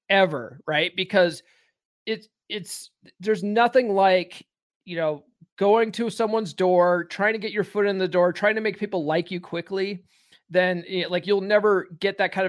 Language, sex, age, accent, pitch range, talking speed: English, male, 30-49, American, 160-205 Hz, 175 wpm